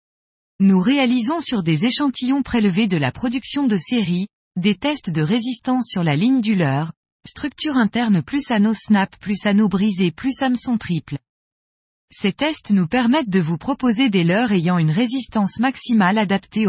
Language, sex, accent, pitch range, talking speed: French, female, French, 185-250 Hz, 160 wpm